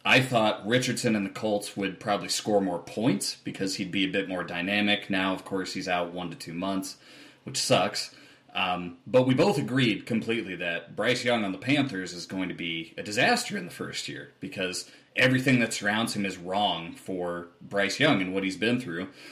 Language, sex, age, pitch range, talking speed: English, male, 30-49, 90-115 Hz, 205 wpm